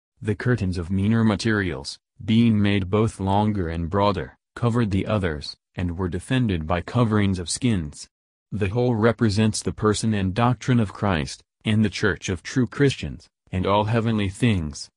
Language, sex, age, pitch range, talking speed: English, male, 40-59, 90-110 Hz, 160 wpm